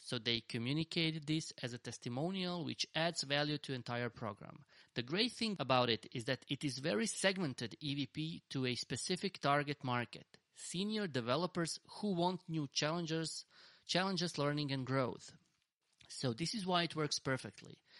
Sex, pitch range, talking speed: male, 125-165 Hz, 155 wpm